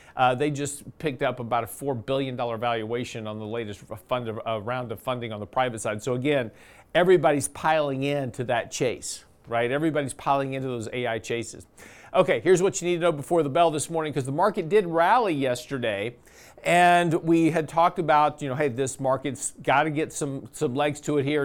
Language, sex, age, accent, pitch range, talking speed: English, male, 50-69, American, 140-175 Hz, 200 wpm